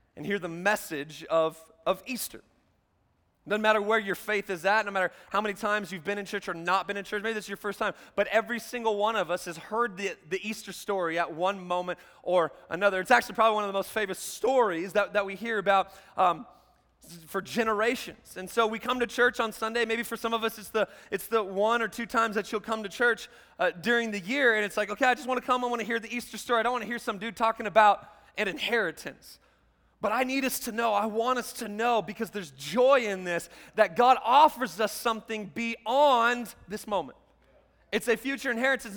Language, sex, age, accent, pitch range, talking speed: English, male, 30-49, American, 190-235 Hz, 235 wpm